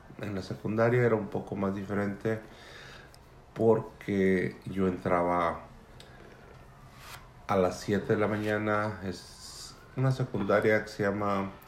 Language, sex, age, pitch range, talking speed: English, male, 50-69, 90-110 Hz, 120 wpm